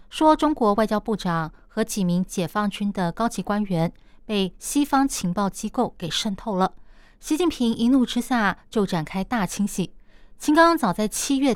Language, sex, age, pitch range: Chinese, female, 20-39, 190-250 Hz